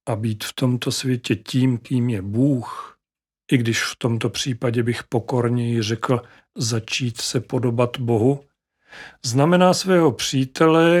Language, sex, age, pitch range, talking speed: Czech, male, 40-59, 120-140 Hz, 130 wpm